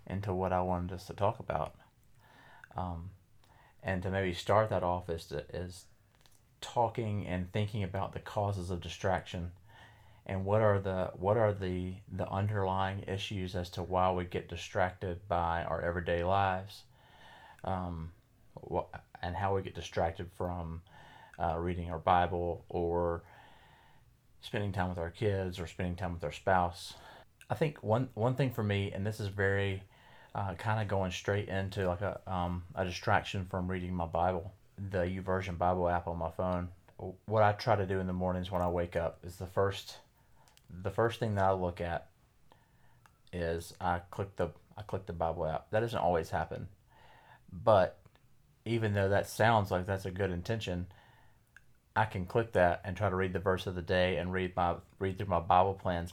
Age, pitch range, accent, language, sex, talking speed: 30-49, 90-105 Hz, American, English, male, 180 wpm